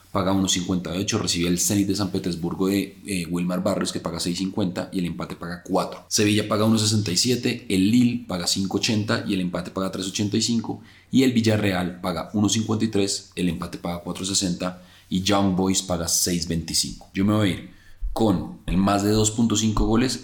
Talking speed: 170 wpm